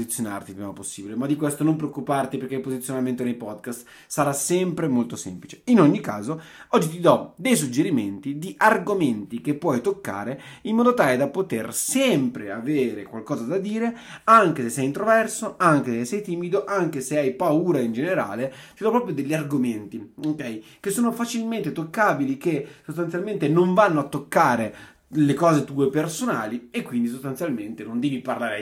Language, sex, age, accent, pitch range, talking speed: Italian, male, 30-49, native, 120-175 Hz, 170 wpm